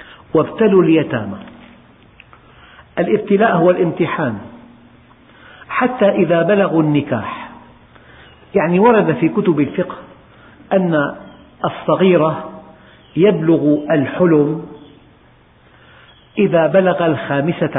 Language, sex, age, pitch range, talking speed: Arabic, male, 50-69, 145-185 Hz, 70 wpm